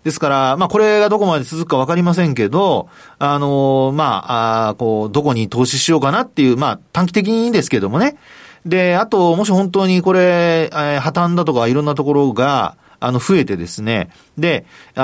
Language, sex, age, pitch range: Japanese, male, 40-59, 115-185 Hz